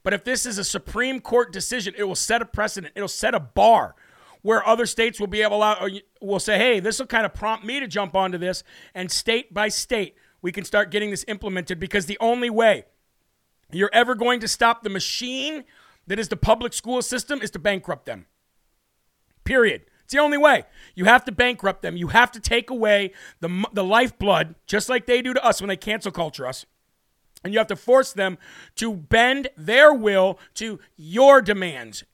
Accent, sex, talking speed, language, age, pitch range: American, male, 205 wpm, English, 40-59, 195-240 Hz